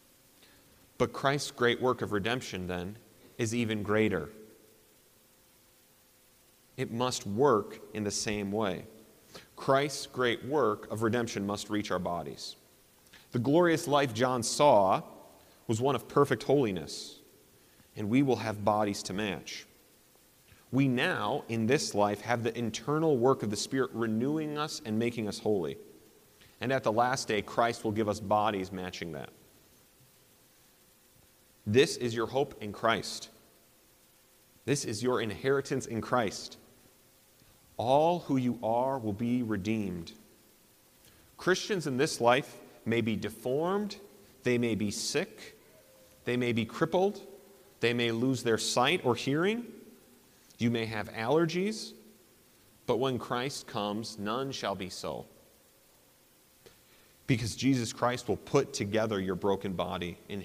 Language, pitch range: English, 105-135 Hz